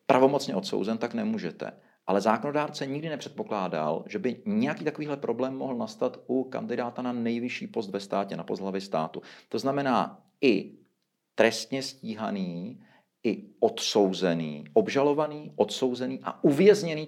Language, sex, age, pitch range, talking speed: Czech, male, 40-59, 110-145 Hz, 125 wpm